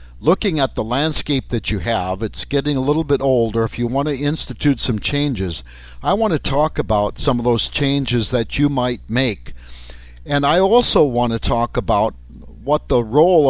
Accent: American